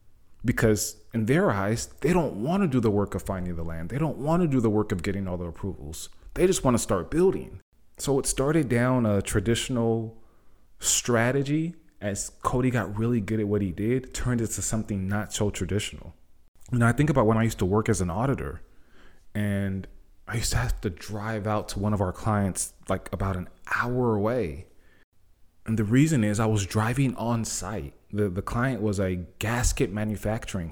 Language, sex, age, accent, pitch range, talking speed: English, male, 20-39, American, 95-120 Hz, 195 wpm